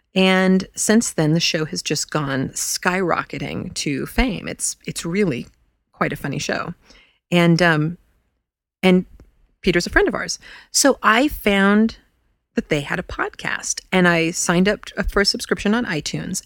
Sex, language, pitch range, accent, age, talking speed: female, English, 165-235 Hz, American, 30-49, 155 wpm